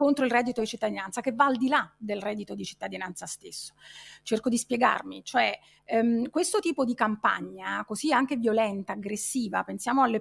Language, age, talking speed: Italian, 30-49, 175 wpm